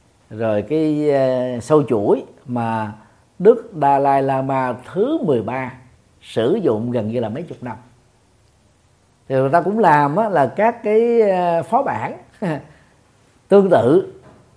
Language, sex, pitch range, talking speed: Vietnamese, male, 125-195 Hz, 135 wpm